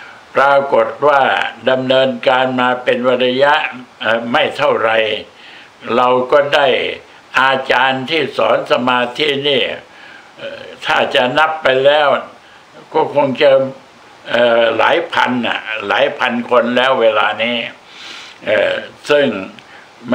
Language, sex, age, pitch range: Thai, male, 60-79, 125-140 Hz